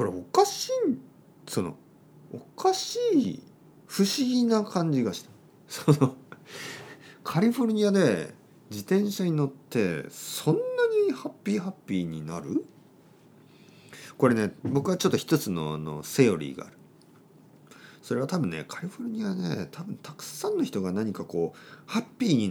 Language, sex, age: Japanese, male, 40-59